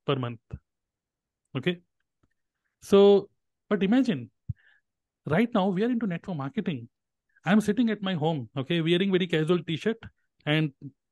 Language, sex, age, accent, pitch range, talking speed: Hindi, male, 30-49, native, 145-190 Hz, 150 wpm